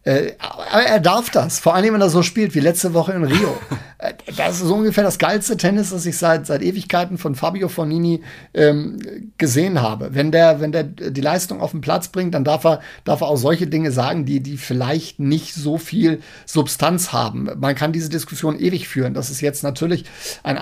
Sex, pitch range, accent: male, 135-160 Hz, German